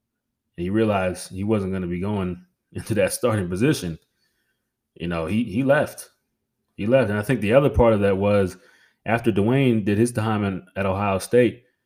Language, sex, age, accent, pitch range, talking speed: English, male, 20-39, American, 100-125 Hz, 185 wpm